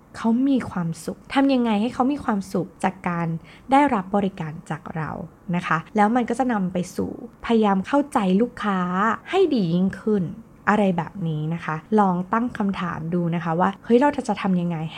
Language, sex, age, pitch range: Thai, female, 20-39, 170-235 Hz